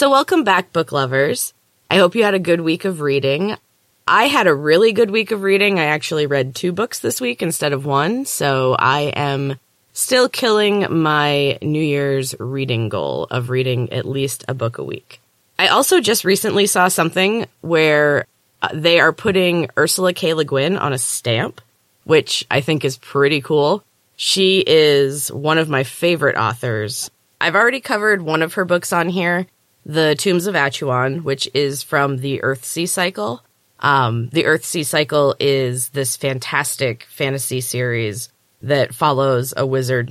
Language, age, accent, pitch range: English, 20-39, American, 130-180 Hz